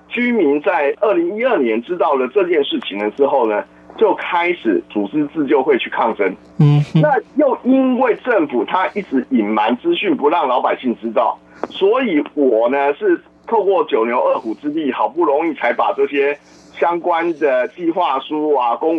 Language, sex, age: Chinese, male, 50-69